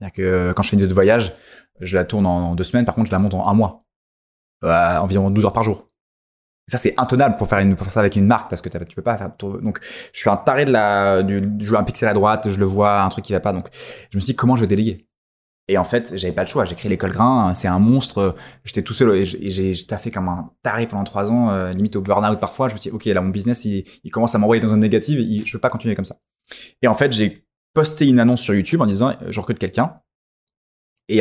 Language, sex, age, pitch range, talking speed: French, male, 20-39, 95-115 Hz, 285 wpm